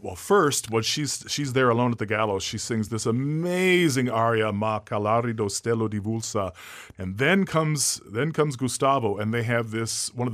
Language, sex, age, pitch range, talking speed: English, male, 40-59, 110-145 Hz, 195 wpm